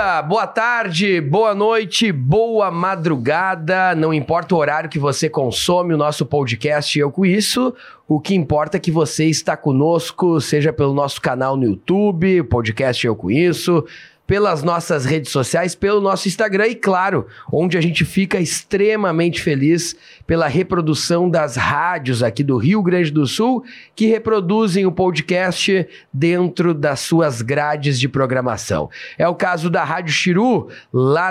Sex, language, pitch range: male, Portuguese, 140-185 Hz